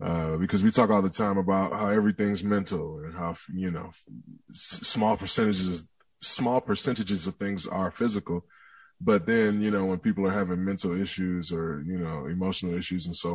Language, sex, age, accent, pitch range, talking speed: English, male, 20-39, American, 90-105 Hz, 180 wpm